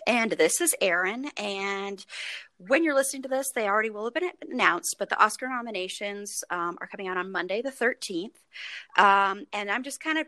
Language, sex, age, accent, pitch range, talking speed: English, female, 30-49, American, 185-250 Hz, 200 wpm